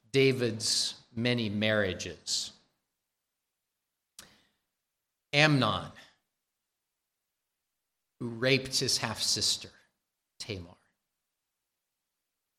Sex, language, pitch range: male, English, 105-130 Hz